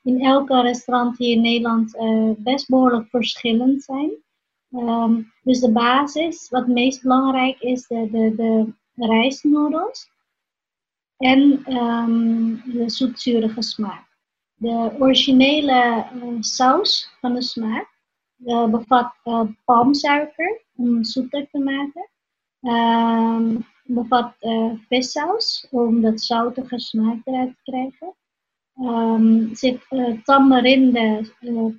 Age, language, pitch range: 30-49, Dutch, 230-260 Hz